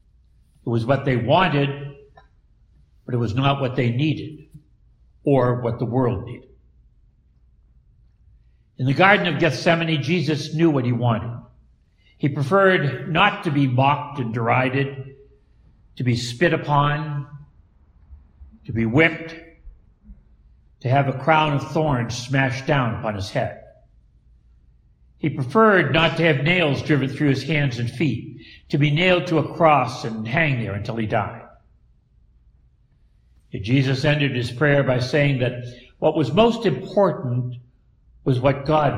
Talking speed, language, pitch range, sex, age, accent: 140 wpm, English, 120-155 Hz, male, 60-79, American